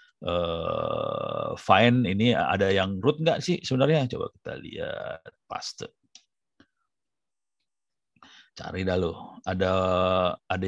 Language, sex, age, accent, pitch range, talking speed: Indonesian, male, 50-69, native, 90-130 Hz, 95 wpm